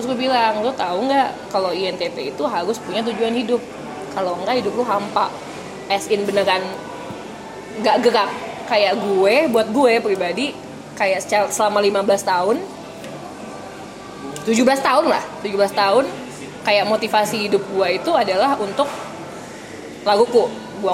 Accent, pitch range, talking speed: native, 200-270 Hz, 130 wpm